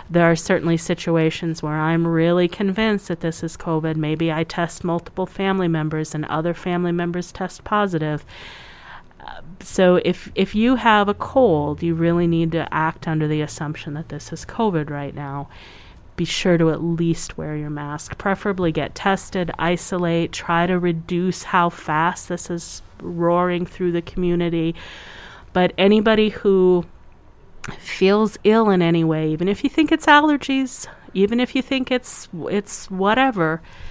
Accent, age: American, 30-49